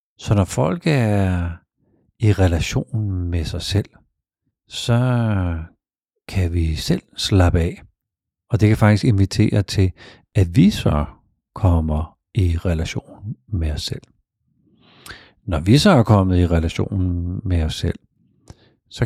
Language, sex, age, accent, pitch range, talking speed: Danish, male, 60-79, native, 85-110 Hz, 130 wpm